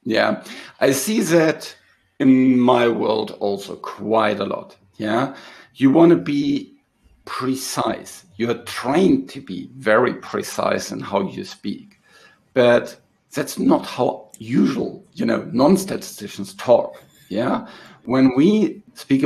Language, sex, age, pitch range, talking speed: English, male, 50-69, 115-135 Hz, 130 wpm